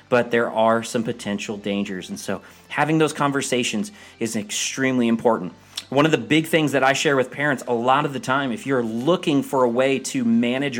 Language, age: English, 30-49